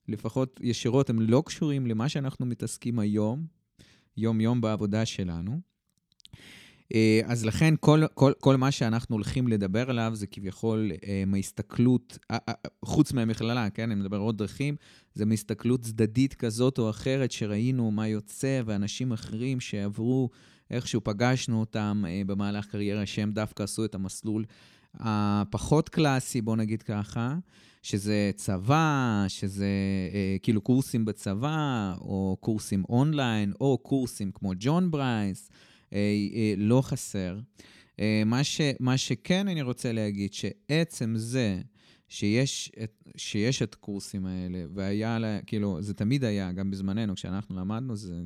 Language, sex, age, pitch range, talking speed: Hebrew, male, 20-39, 100-125 Hz, 125 wpm